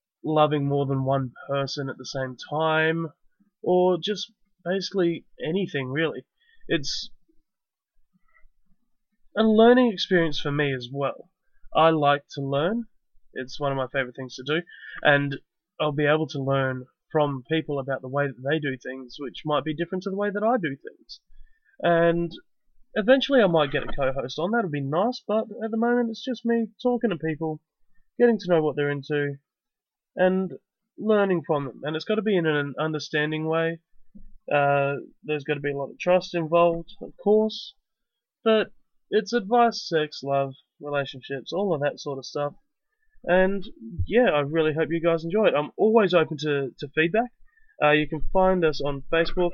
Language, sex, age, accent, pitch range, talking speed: English, male, 20-39, Australian, 145-210 Hz, 180 wpm